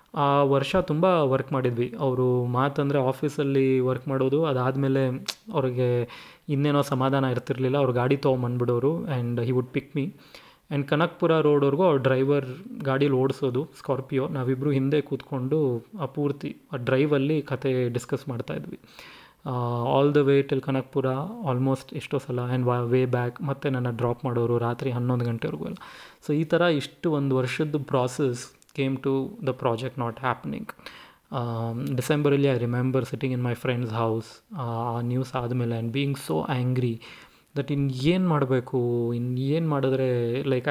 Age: 20-39